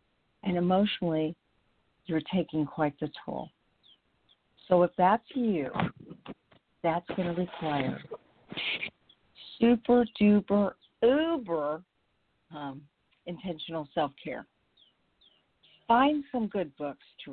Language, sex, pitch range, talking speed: English, female, 165-215 Hz, 85 wpm